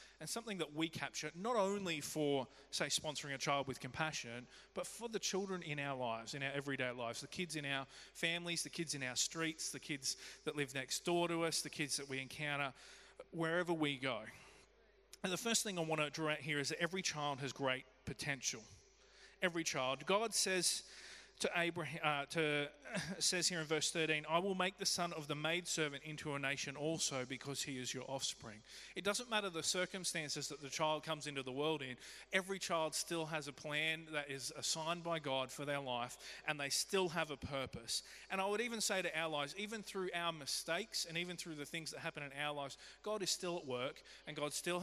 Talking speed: 215 wpm